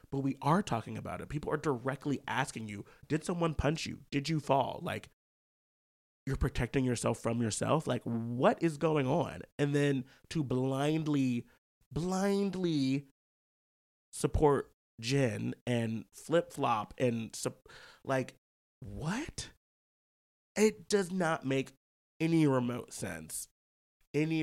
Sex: male